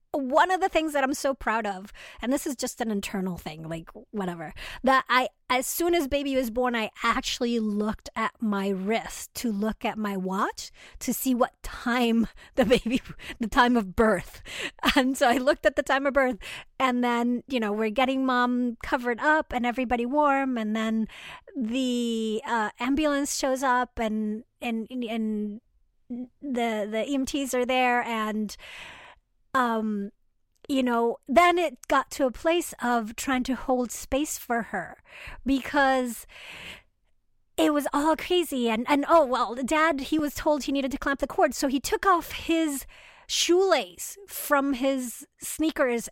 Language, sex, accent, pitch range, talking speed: English, female, American, 230-285 Hz, 170 wpm